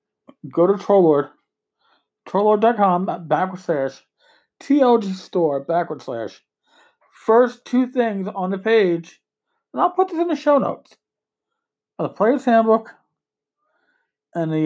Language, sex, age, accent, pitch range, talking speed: English, male, 50-69, American, 165-260 Hz, 120 wpm